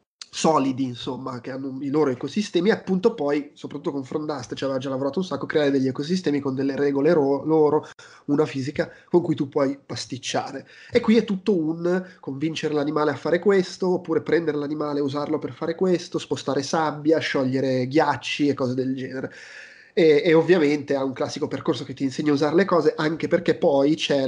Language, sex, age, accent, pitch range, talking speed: Italian, male, 20-39, native, 130-160 Hz, 195 wpm